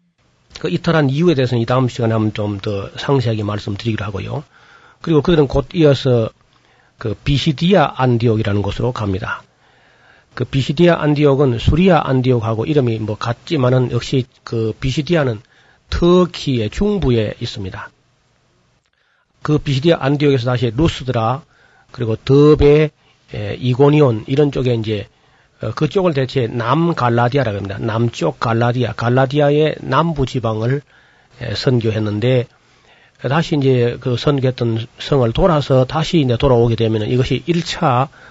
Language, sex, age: Korean, male, 40-59